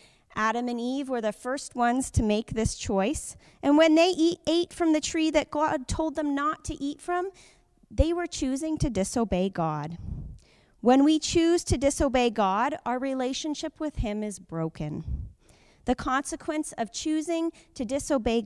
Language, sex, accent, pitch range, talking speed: English, female, American, 205-295 Hz, 165 wpm